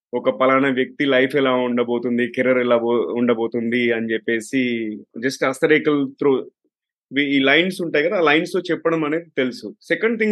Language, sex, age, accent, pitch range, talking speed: Telugu, male, 30-49, native, 140-180 Hz, 145 wpm